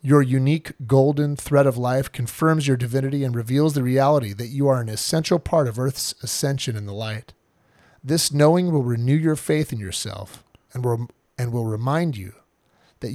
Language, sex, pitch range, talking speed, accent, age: English, male, 120-155 Hz, 180 wpm, American, 40-59